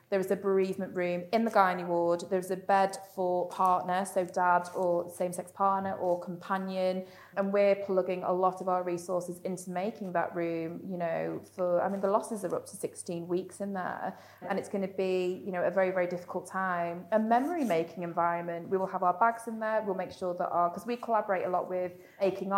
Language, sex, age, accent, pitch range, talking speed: English, female, 20-39, British, 180-195 Hz, 215 wpm